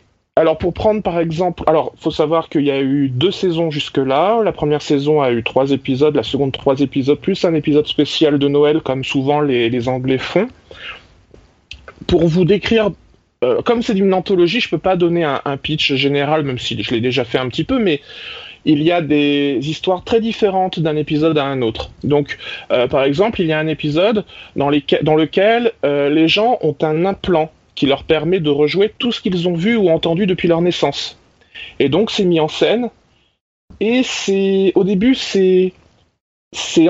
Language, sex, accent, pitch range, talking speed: French, male, French, 150-195 Hz, 200 wpm